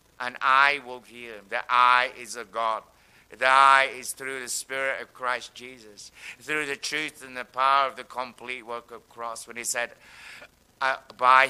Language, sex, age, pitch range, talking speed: English, male, 60-79, 135-190 Hz, 195 wpm